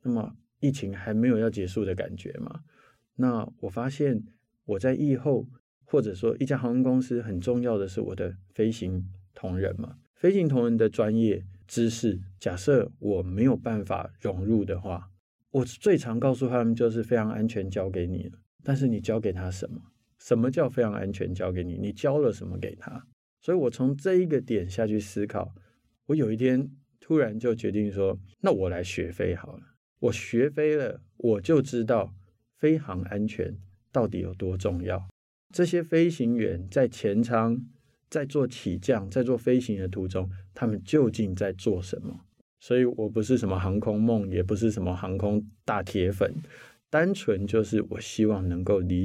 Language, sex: Chinese, male